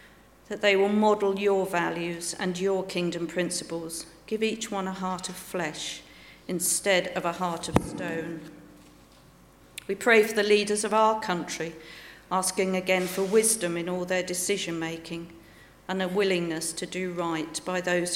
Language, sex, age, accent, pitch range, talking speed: English, female, 50-69, British, 170-195 Hz, 155 wpm